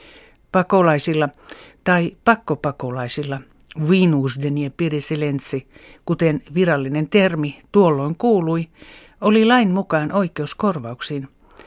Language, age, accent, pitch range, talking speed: Finnish, 60-79, native, 145-190 Hz, 75 wpm